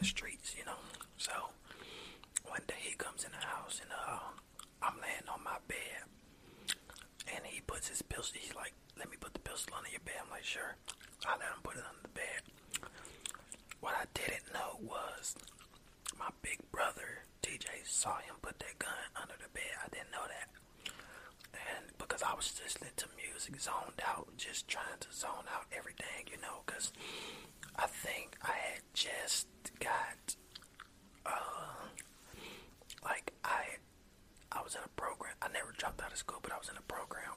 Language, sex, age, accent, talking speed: English, male, 20-39, American, 175 wpm